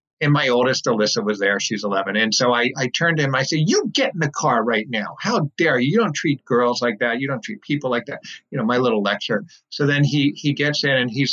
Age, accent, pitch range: 50-69, American, 120-175 Hz